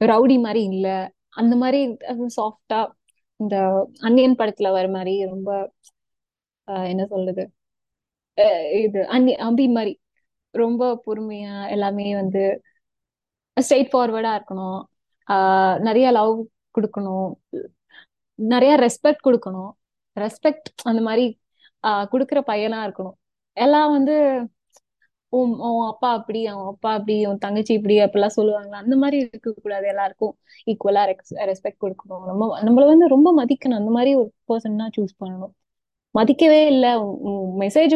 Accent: native